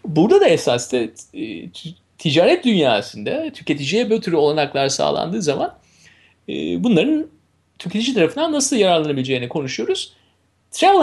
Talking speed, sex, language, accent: 100 wpm, male, Turkish, native